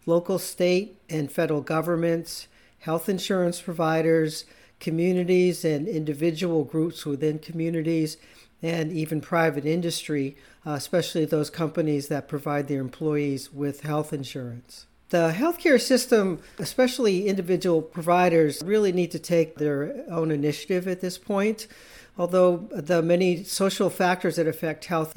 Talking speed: 125 wpm